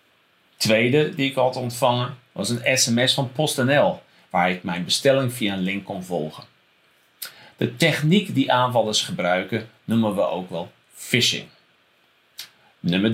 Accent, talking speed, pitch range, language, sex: Dutch, 135 wpm, 95-135 Hz, Dutch, male